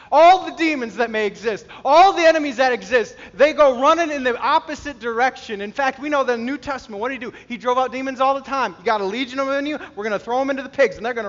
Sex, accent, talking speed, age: male, American, 290 wpm, 30-49